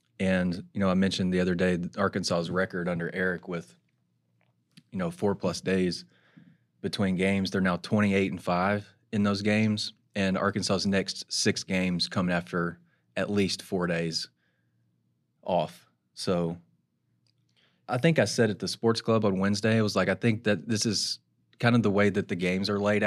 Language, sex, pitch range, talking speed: English, male, 90-105 Hz, 175 wpm